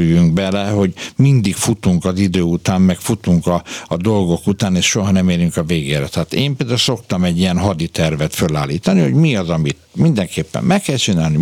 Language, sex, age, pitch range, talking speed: Hungarian, male, 60-79, 85-105 Hz, 180 wpm